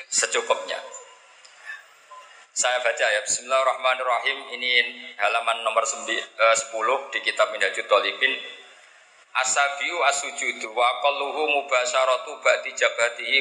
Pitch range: 120-150 Hz